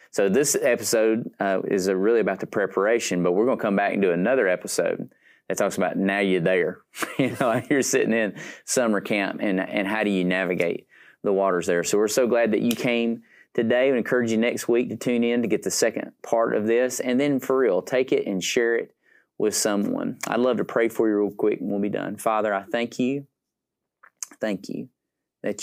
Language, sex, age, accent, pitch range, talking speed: English, male, 30-49, American, 95-115 Hz, 220 wpm